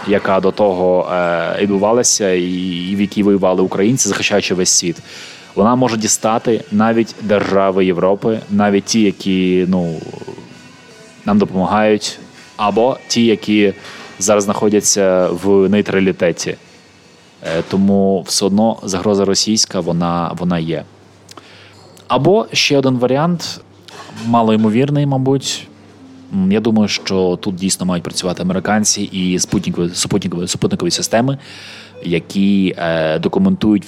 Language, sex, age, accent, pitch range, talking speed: Ukrainian, male, 20-39, native, 90-110 Hz, 110 wpm